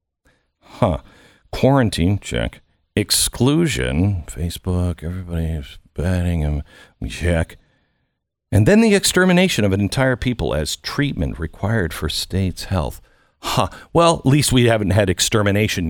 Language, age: English, 50-69